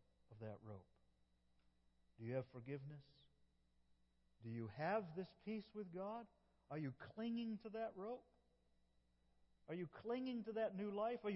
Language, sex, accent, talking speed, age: English, male, American, 150 wpm, 50-69